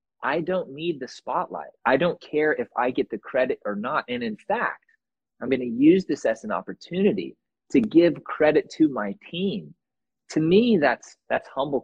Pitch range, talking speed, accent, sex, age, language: 130-200 Hz, 190 wpm, American, male, 20-39, English